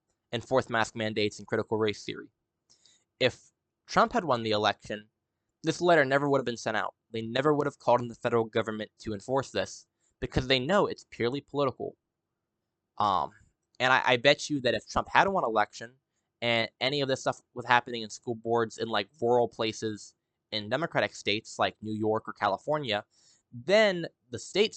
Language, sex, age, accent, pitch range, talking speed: English, male, 10-29, American, 110-135 Hz, 185 wpm